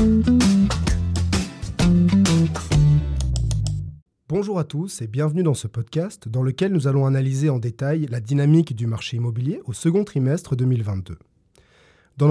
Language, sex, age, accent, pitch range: Dutch, male, 20-39, French, 125-180 Hz